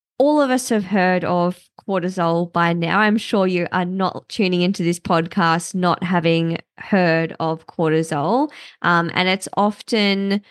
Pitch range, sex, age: 170-210 Hz, female, 20-39